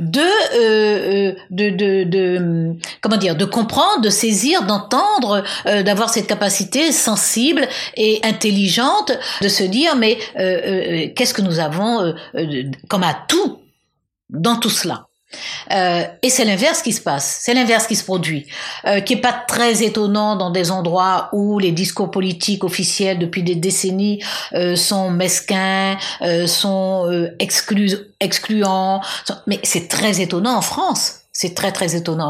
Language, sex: French, female